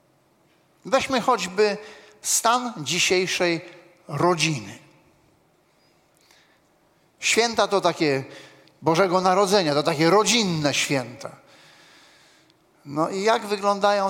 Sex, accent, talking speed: male, native, 75 wpm